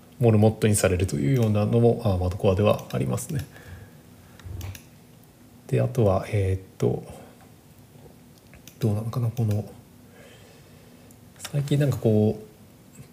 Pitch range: 105-135 Hz